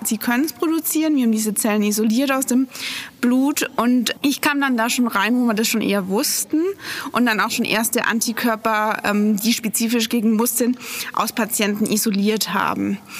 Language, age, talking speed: German, 20-39, 180 wpm